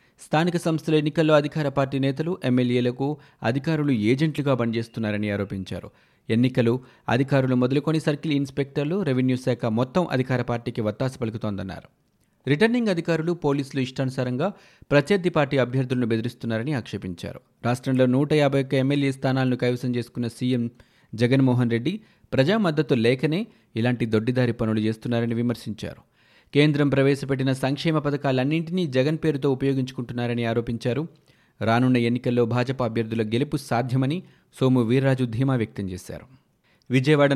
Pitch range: 120-145 Hz